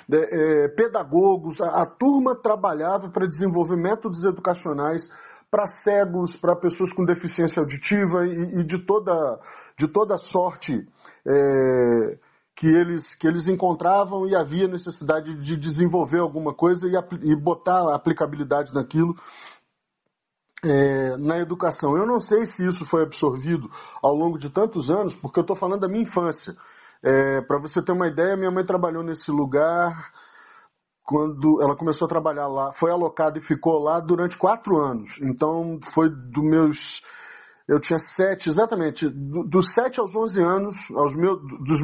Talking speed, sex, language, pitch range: 150 wpm, male, Portuguese, 155-185 Hz